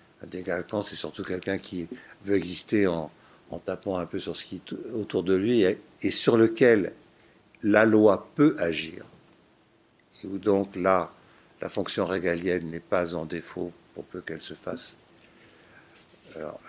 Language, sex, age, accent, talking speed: French, male, 60-79, French, 160 wpm